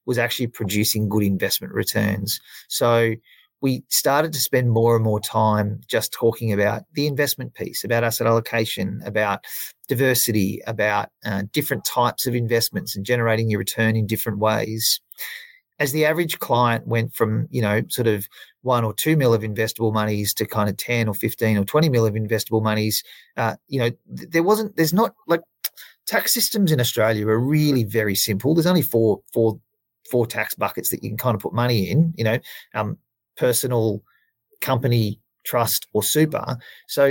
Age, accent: 30-49, Australian